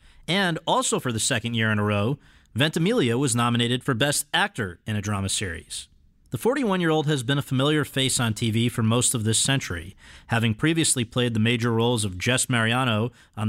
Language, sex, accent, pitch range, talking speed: English, male, American, 110-145 Hz, 190 wpm